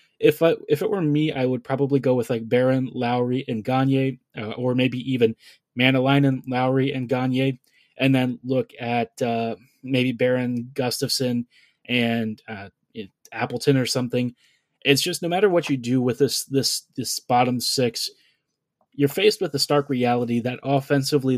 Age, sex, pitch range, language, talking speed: 20-39, male, 125-140 Hz, English, 165 wpm